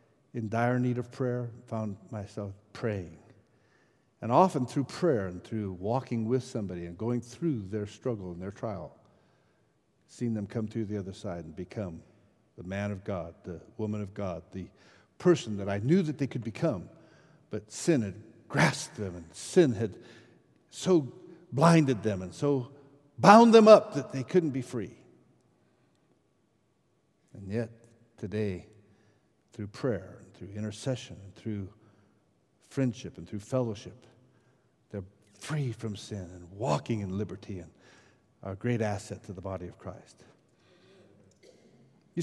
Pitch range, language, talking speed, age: 100-130 Hz, English, 145 wpm, 60-79